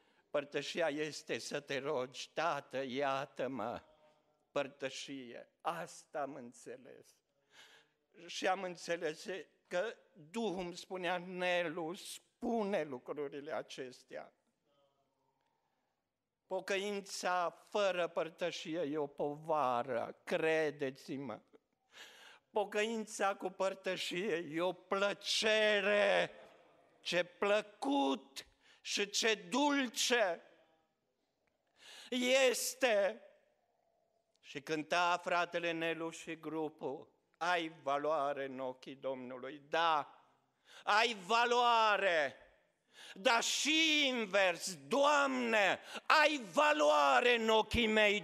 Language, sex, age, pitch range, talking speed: Romanian, male, 50-69, 150-210 Hz, 80 wpm